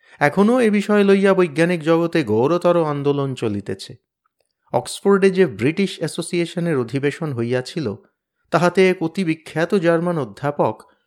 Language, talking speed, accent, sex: Bengali, 105 wpm, native, male